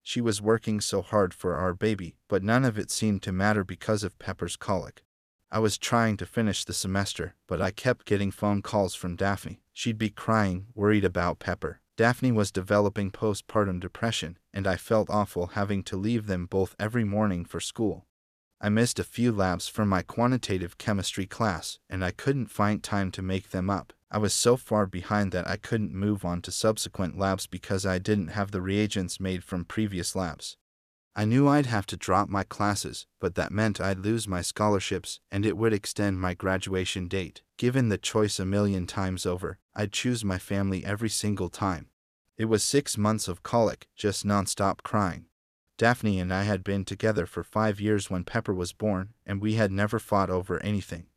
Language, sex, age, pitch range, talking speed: English, male, 30-49, 95-110 Hz, 195 wpm